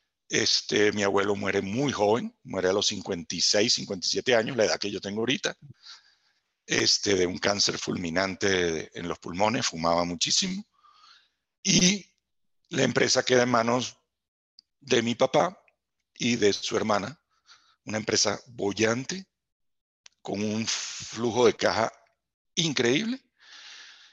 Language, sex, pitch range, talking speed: Spanish, male, 90-140 Hz, 125 wpm